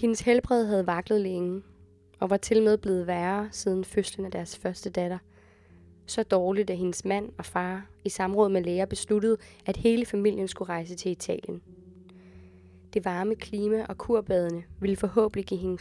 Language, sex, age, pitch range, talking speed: Danish, female, 20-39, 130-210 Hz, 170 wpm